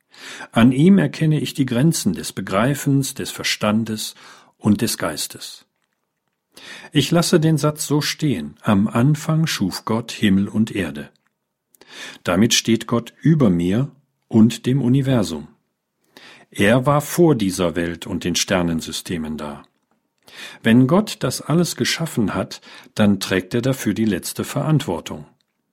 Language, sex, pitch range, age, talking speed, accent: German, male, 100-145 Hz, 50-69, 130 wpm, German